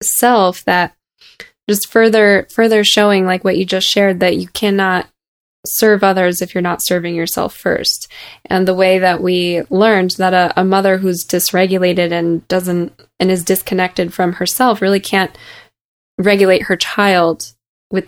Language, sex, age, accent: English, female, 10-29, American